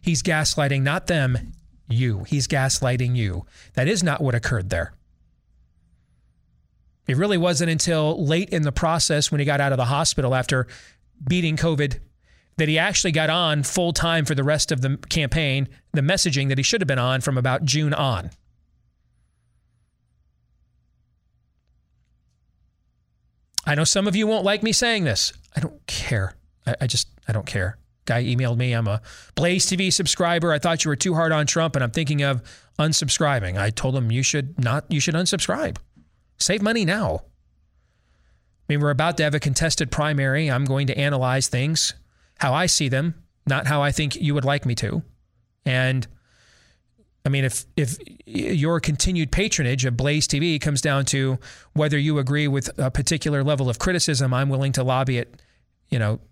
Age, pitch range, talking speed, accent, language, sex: 30-49, 115-155 Hz, 175 wpm, American, English, male